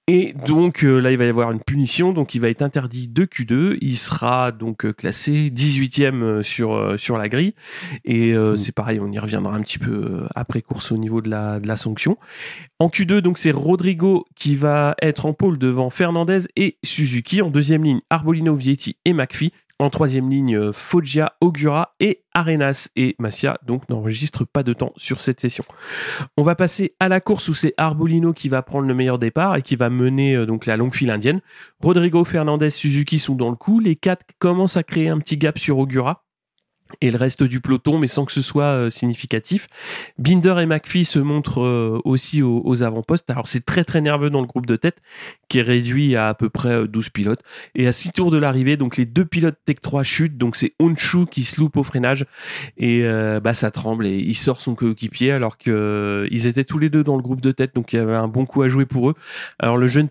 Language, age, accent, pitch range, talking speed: French, 30-49, French, 120-160 Hz, 220 wpm